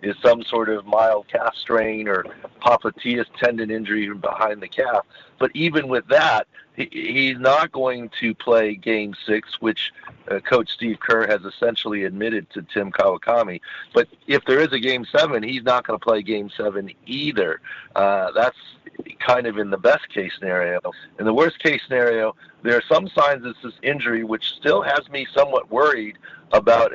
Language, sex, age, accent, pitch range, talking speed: English, male, 50-69, American, 105-125 Hz, 170 wpm